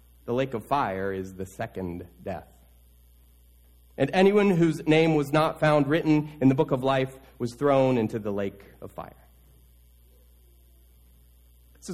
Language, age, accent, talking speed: English, 30-49, American, 145 wpm